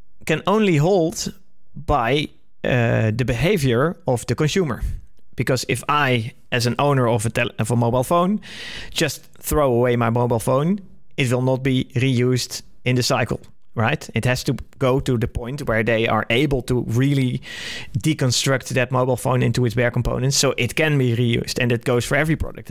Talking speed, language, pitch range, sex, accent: 185 wpm, English, 120-140 Hz, male, Dutch